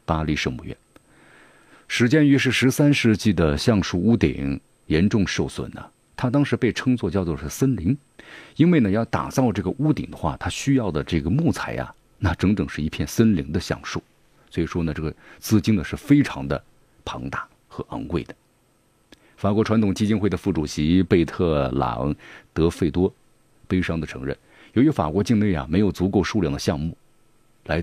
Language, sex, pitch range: Chinese, male, 80-110 Hz